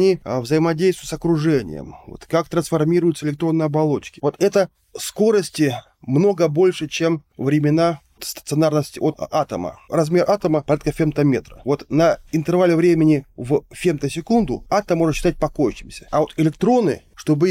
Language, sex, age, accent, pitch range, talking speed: Russian, male, 20-39, native, 130-165 Hz, 125 wpm